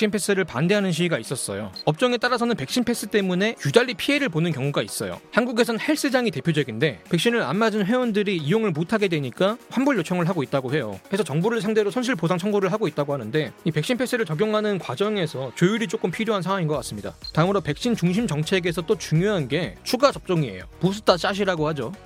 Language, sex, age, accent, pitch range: Korean, male, 30-49, native, 160-225 Hz